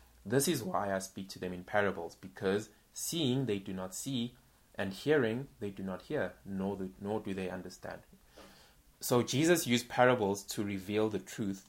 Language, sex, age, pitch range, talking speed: English, male, 20-39, 95-120 Hz, 175 wpm